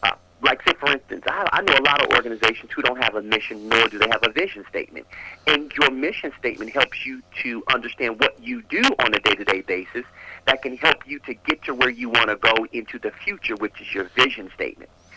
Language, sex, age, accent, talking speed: English, male, 50-69, American, 230 wpm